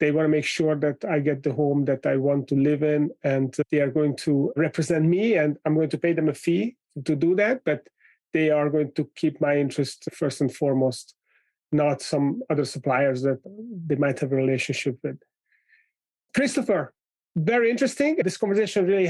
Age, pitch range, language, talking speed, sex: 30-49, 150-185 Hz, English, 195 wpm, male